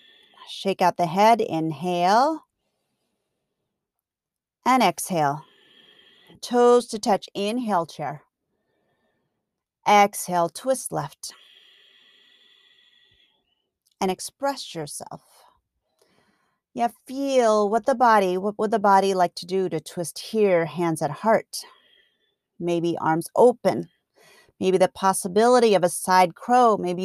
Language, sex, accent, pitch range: English, female, American, 180-245 Hz